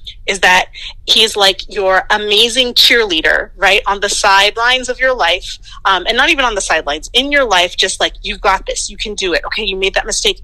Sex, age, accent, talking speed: female, 30-49, American, 220 wpm